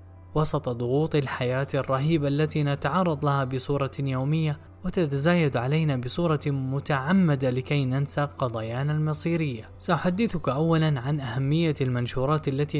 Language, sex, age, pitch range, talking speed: Arabic, male, 10-29, 125-160 Hz, 110 wpm